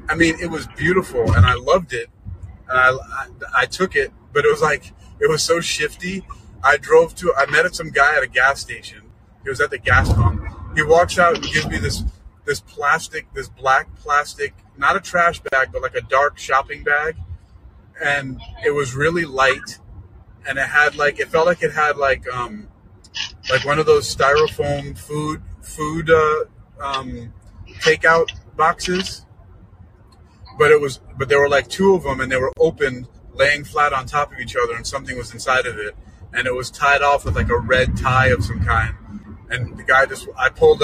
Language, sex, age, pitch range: English, male, 30-49, 105-160 Hz